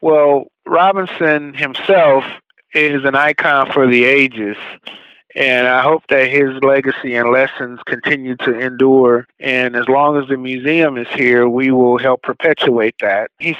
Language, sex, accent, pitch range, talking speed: English, male, American, 125-145 Hz, 150 wpm